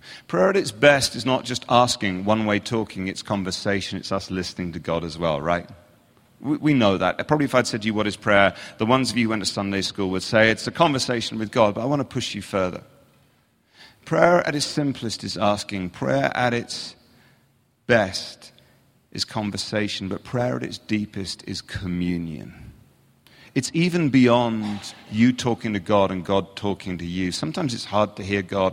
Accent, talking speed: British, 195 wpm